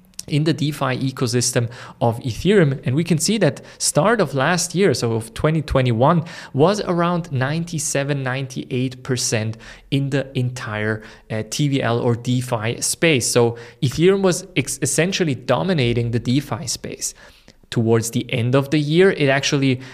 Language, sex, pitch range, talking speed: English, male, 120-155 Hz, 140 wpm